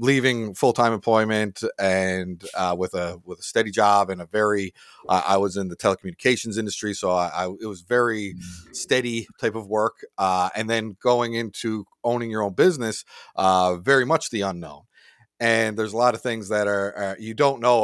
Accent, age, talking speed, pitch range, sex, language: American, 40-59, 190 wpm, 95-115 Hz, male, English